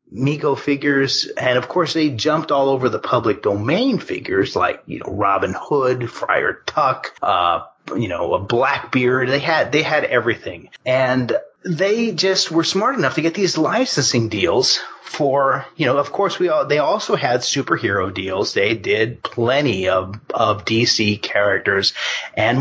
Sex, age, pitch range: male, 30-49, 115-180 Hz